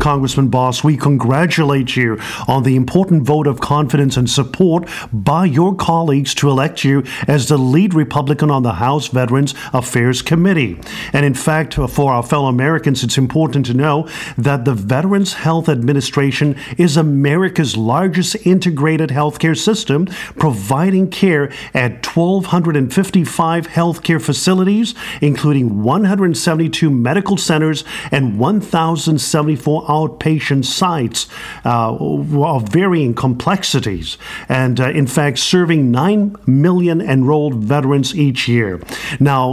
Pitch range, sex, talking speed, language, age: 135-165 Hz, male, 125 wpm, English, 50-69